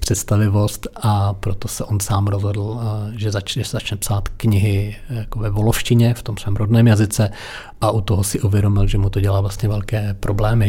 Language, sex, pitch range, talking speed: Czech, male, 100-110 Hz, 180 wpm